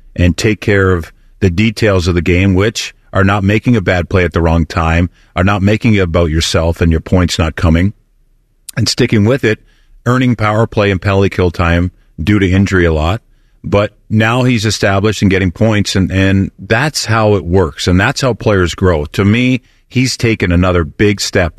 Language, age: English, 40-59